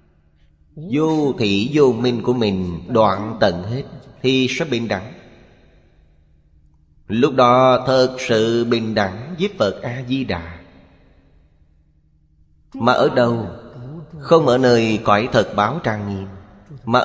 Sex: male